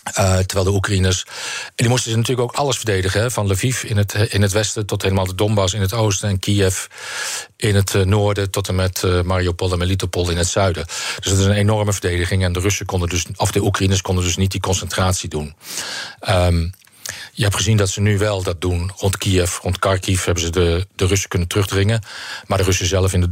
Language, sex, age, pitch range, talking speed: Dutch, male, 40-59, 90-105 Hz, 230 wpm